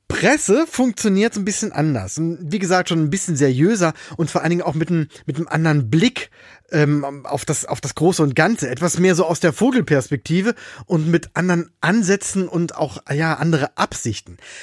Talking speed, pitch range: 195 wpm, 145-195 Hz